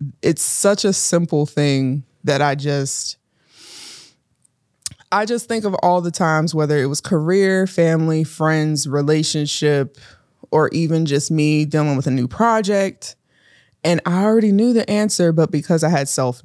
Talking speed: 155 wpm